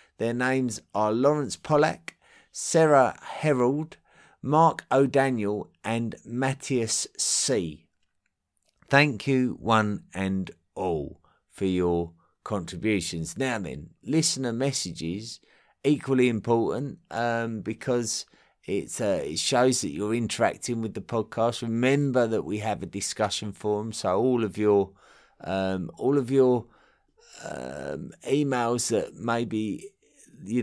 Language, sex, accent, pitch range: English, male, British, 100-135 Hz